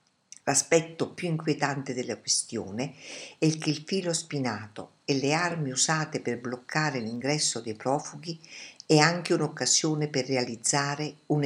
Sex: female